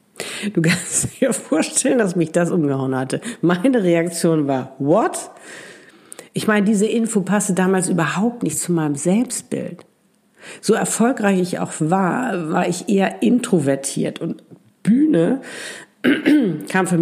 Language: German